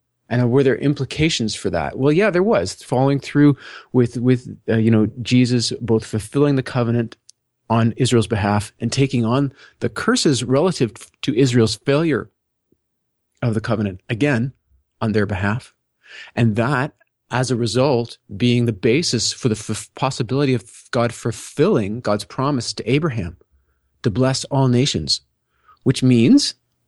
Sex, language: male, English